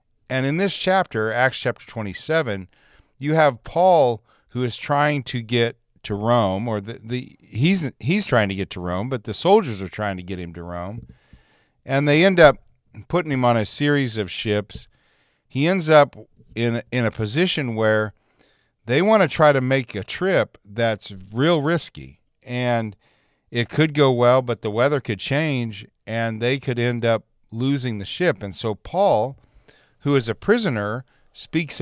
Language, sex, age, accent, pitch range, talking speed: English, male, 40-59, American, 110-140 Hz, 175 wpm